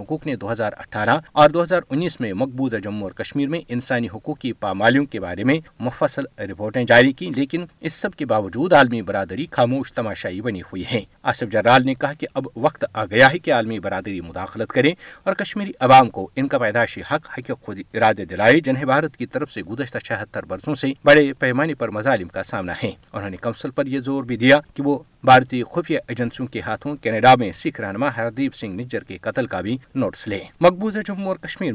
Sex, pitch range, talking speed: male, 115-150 Hz, 205 wpm